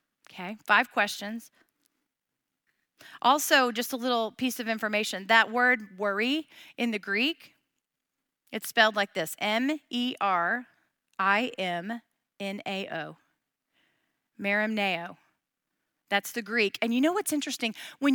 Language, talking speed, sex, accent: English, 105 wpm, female, American